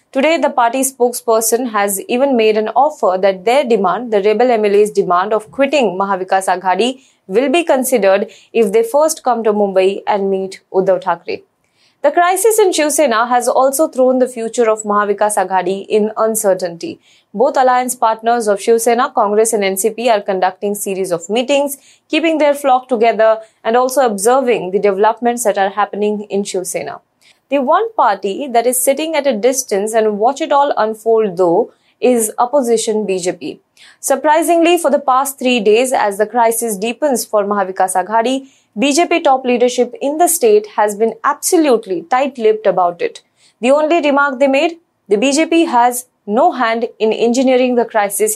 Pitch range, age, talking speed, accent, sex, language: 210-275 Hz, 20-39, 165 wpm, Indian, female, English